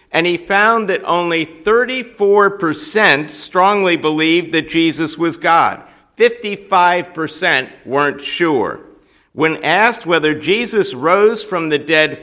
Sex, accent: male, American